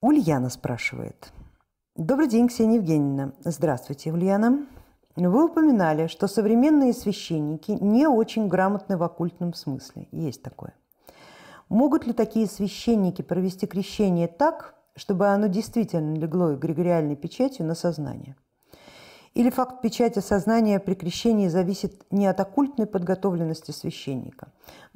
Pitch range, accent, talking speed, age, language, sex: 165-225 Hz, native, 120 wpm, 50-69, Russian, female